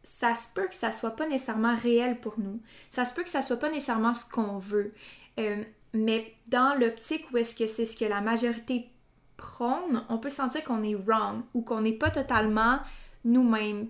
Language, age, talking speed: French, 20-39, 205 wpm